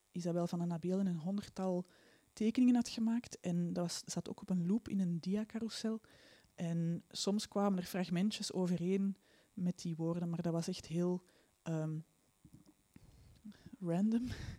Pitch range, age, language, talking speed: 170-200 Hz, 20-39, Dutch, 150 wpm